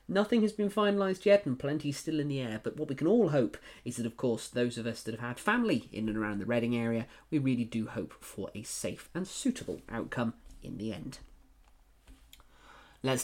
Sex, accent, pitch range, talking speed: male, British, 120-185 Hz, 220 wpm